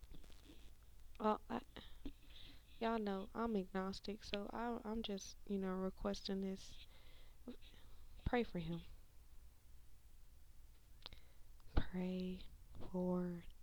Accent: American